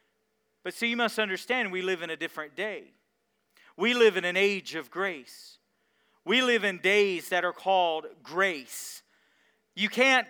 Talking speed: 165 wpm